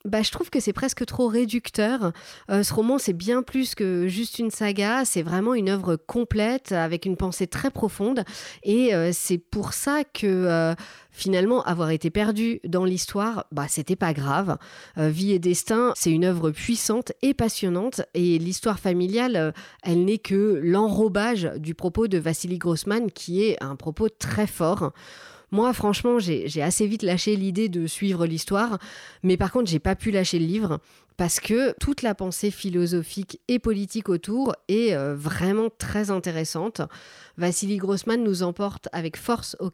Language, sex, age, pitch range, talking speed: French, female, 40-59, 175-220 Hz, 170 wpm